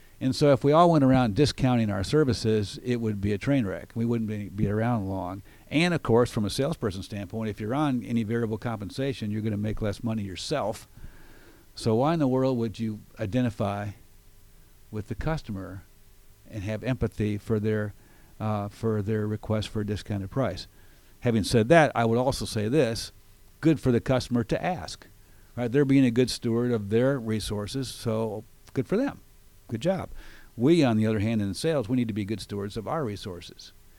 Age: 50-69